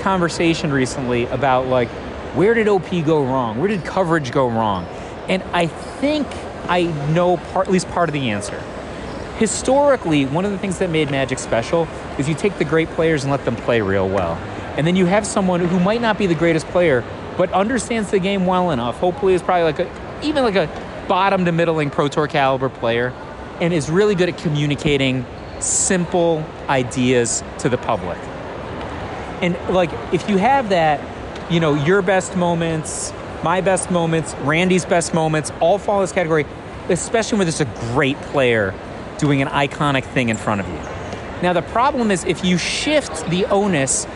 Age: 30-49